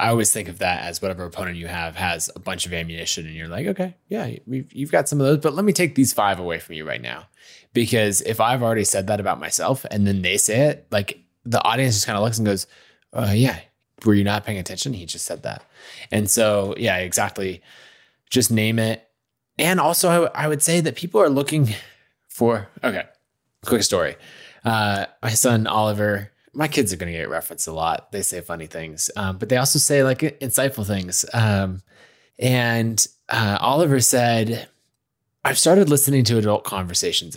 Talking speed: 200 wpm